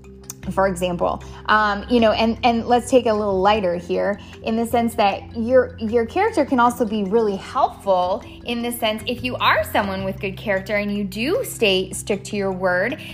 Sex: female